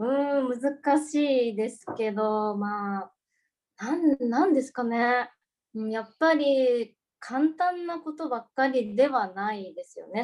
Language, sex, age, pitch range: Japanese, female, 20-39, 195-250 Hz